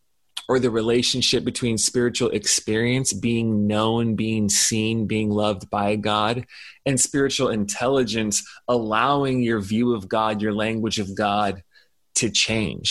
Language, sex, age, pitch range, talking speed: English, male, 20-39, 115-140 Hz, 130 wpm